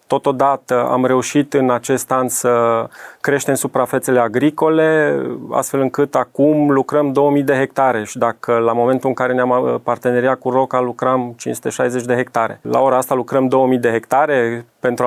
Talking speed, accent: 155 wpm, native